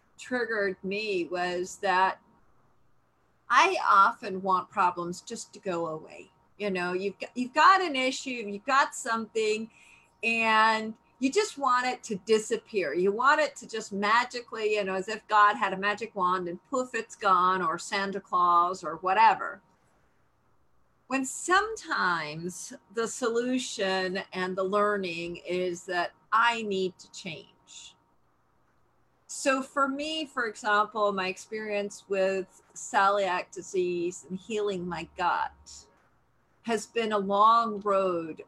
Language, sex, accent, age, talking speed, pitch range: English, female, American, 50-69, 135 wpm, 180-230 Hz